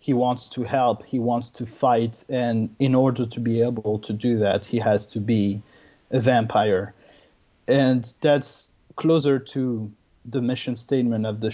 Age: 30-49